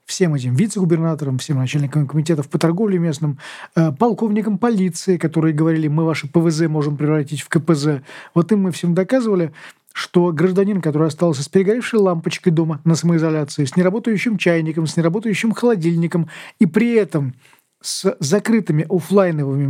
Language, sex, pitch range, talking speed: Russian, male, 155-190 Hz, 145 wpm